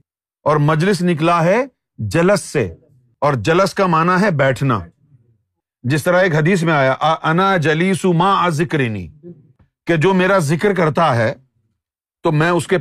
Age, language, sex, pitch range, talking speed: 40-59, Urdu, male, 135-190 Hz, 150 wpm